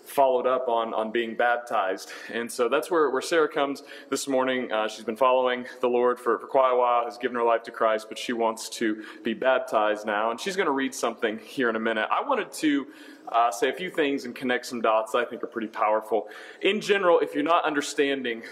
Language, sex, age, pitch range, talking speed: English, male, 30-49, 115-145 Hz, 235 wpm